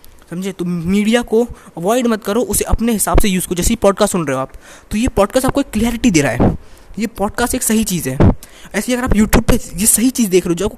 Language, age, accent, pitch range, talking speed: Hindi, 20-39, native, 160-220 Hz, 260 wpm